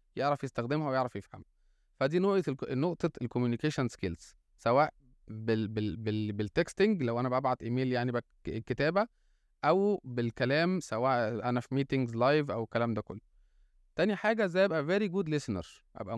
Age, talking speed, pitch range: 20-39, 120 wpm, 115-150 Hz